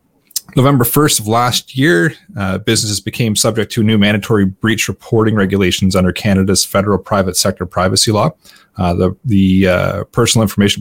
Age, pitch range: 30-49, 95-115 Hz